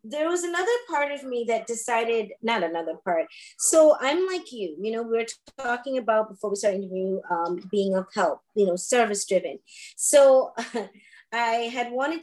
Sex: female